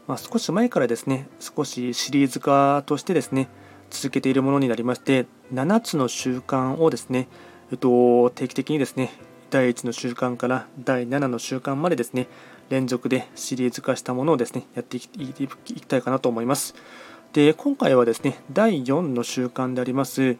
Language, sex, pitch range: Japanese, male, 125-145 Hz